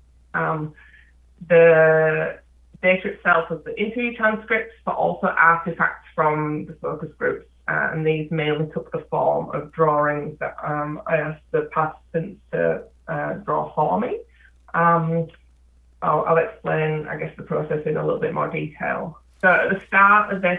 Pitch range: 150-165 Hz